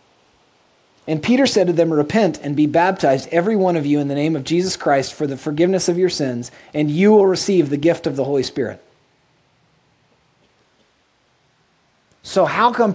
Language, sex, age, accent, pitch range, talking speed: English, male, 30-49, American, 150-200 Hz, 175 wpm